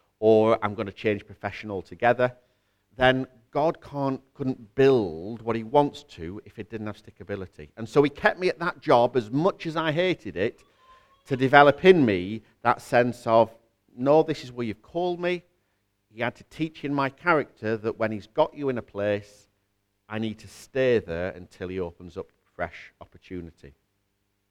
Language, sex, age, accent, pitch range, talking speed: English, male, 50-69, British, 100-135 Hz, 185 wpm